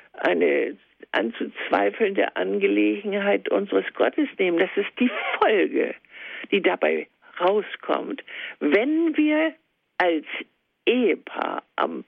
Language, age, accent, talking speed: German, 60-79, German, 90 wpm